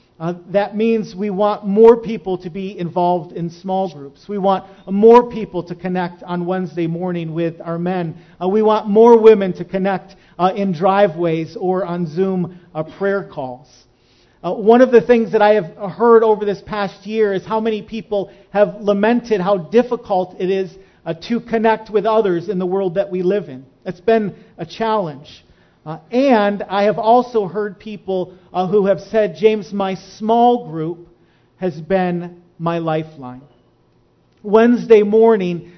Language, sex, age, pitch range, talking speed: English, male, 40-59, 170-210 Hz, 170 wpm